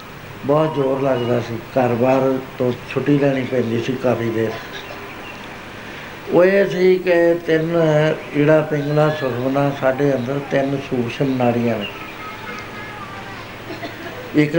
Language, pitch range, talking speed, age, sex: Punjabi, 130-155 Hz, 105 wpm, 60-79, male